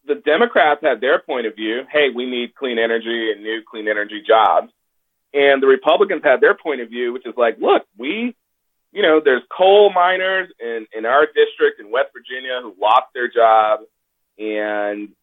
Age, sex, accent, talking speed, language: 30-49, male, American, 185 wpm, English